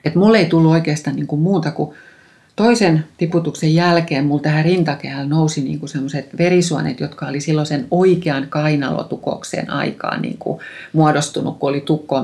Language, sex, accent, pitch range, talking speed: Finnish, female, native, 150-180 Hz, 145 wpm